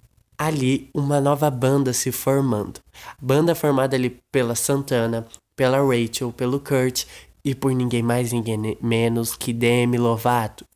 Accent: Brazilian